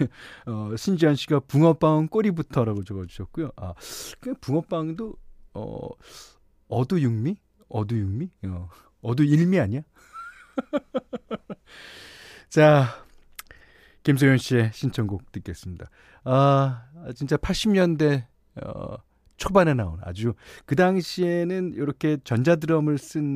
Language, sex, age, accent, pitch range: Korean, male, 40-59, native, 110-165 Hz